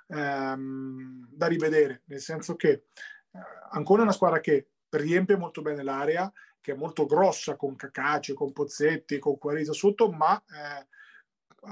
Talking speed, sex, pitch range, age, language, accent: 145 wpm, male, 150-185 Hz, 30-49, Italian, native